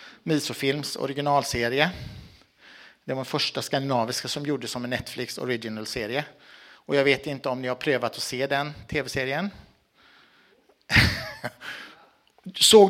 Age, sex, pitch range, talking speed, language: 60-79, male, 130-200 Hz, 120 wpm, Swedish